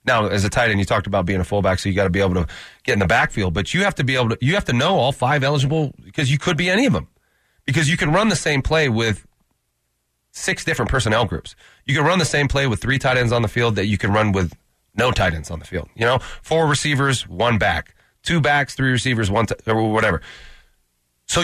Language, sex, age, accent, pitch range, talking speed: English, male, 30-49, American, 100-135 Hz, 260 wpm